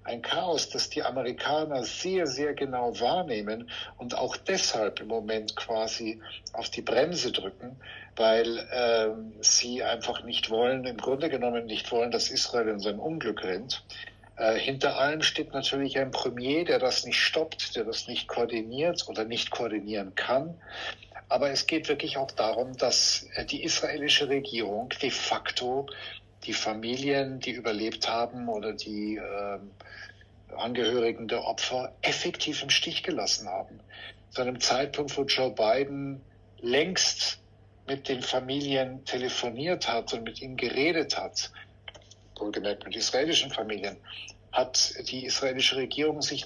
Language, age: German, 60-79